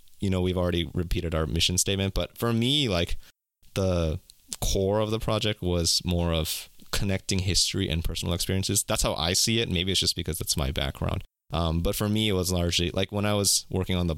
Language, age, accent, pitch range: English, 20-39, American, 80-95 Hz